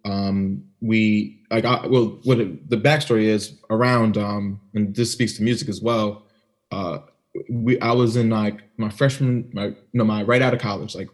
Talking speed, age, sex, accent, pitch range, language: 190 wpm, 20-39, male, American, 100-115 Hz, English